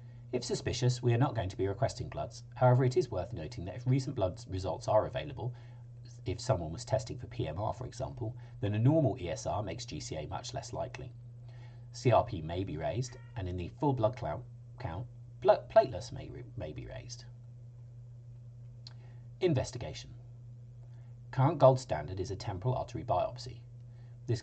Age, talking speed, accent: 40-59, 155 wpm, British